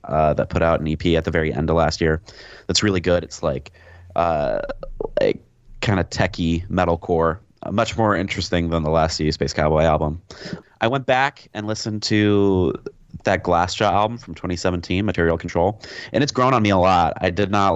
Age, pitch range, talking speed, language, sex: 30-49, 85-105 Hz, 195 wpm, English, male